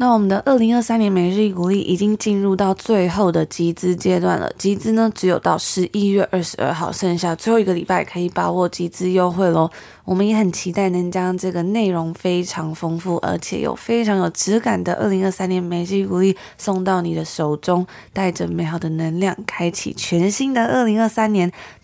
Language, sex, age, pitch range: Chinese, female, 20-39, 175-205 Hz